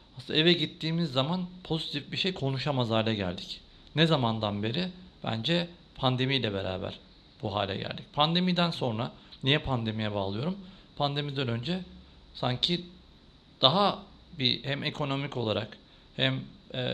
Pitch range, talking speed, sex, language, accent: 125-155 Hz, 120 wpm, male, Turkish, native